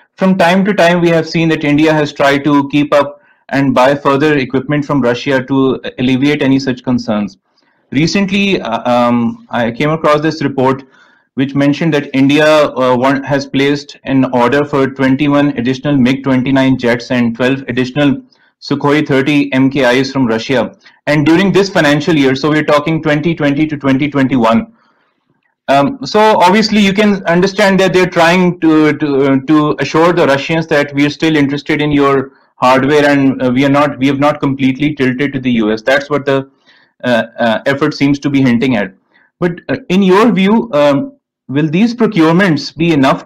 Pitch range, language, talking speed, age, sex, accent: 135-165 Hz, English, 170 wpm, 30-49, male, Indian